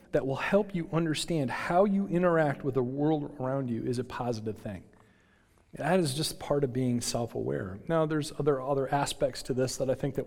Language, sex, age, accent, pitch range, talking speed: English, male, 40-59, American, 115-155 Hz, 205 wpm